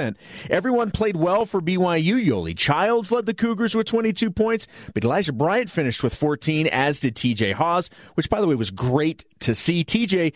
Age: 30-49